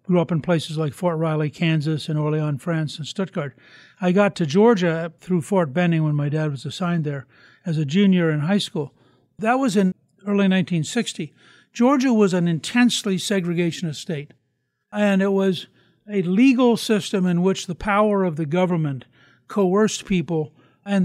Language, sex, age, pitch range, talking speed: English, male, 60-79, 160-200 Hz, 170 wpm